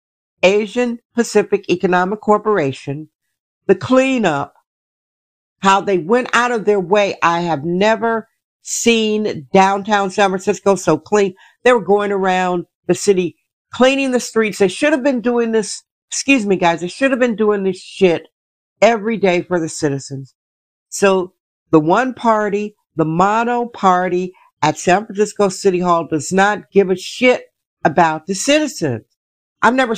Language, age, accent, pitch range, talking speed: English, 60-79, American, 170-210 Hz, 150 wpm